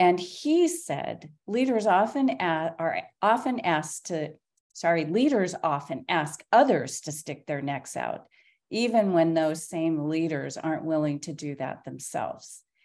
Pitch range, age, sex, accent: 155-185 Hz, 40-59, female, American